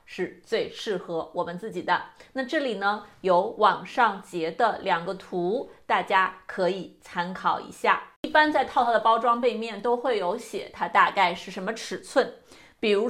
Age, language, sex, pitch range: 30-49, Chinese, female, 190-295 Hz